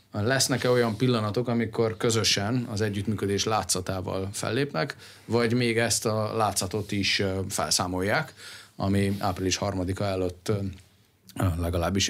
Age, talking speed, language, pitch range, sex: 30-49, 105 wpm, Hungarian, 95-110 Hz, male